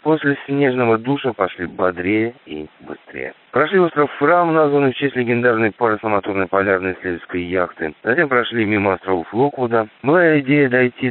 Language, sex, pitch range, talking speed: Russian, male, 90-125 Hz, 145 wpm